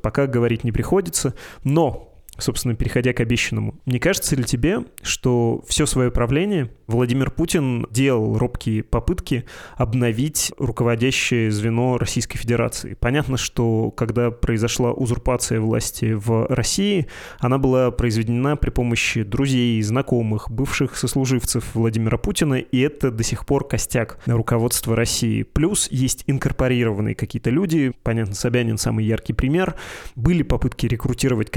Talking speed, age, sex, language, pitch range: 125 wpm, 20-39, male, Russian, 115-135 Hz